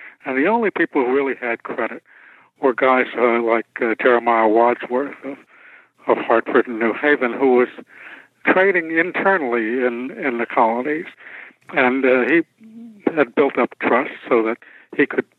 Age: 60-79